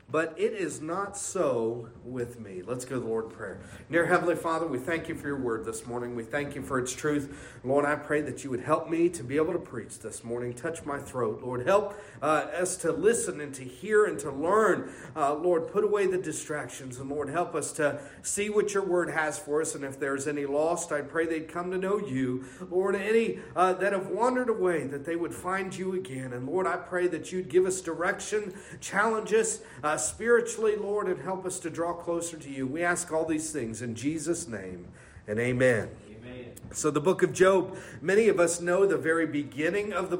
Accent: American